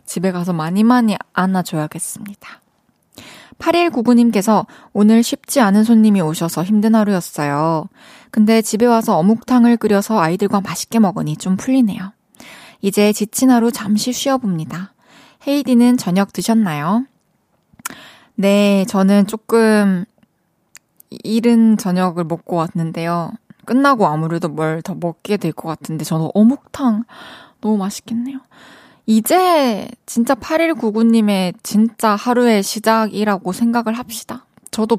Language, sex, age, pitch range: Korean, female, 20-39, 185-230 Hz